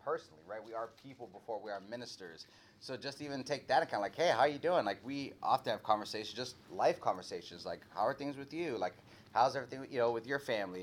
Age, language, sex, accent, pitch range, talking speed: 30-49, English, male, American, 100-125 Hz, 245 wpm